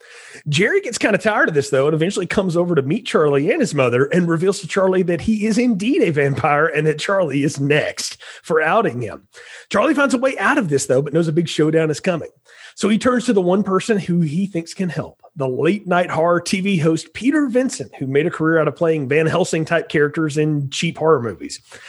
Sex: male